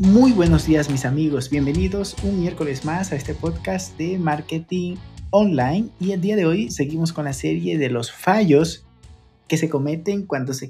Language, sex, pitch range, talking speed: Spanish, male, 130-170 Hz, 180 wpm